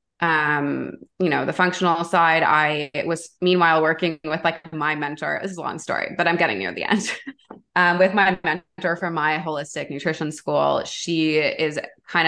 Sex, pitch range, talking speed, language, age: female, 150-180 Hz, 185 wpm, English, 20-39